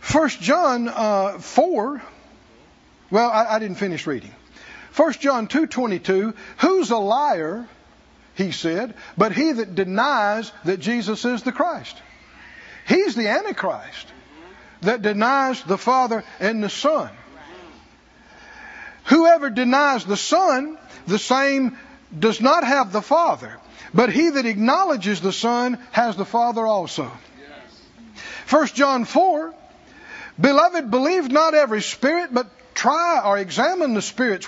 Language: English